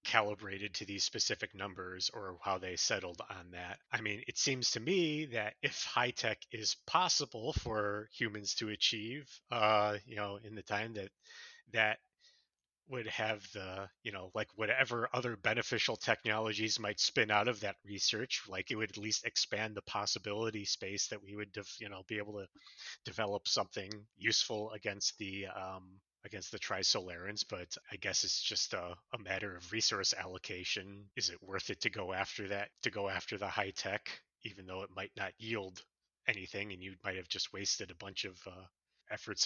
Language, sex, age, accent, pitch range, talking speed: English, male, 30-49, American, 95-110 Hz, 185 wpm